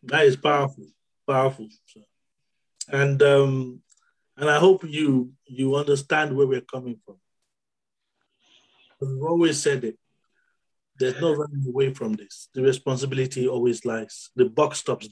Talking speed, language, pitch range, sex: 135 wpm, English, 130-155 Hz, male